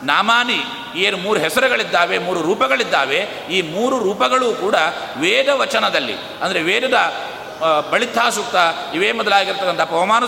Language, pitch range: Kannada, 170-220 Hz